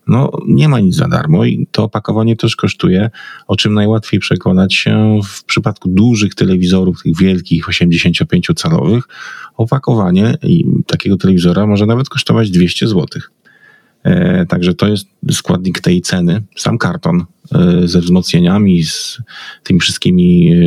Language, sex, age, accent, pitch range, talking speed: Polish, male, 30-49, native, 95-155 Hz, 130 wpm